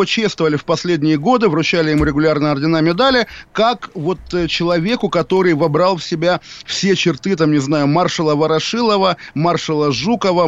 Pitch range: 150-185 Hz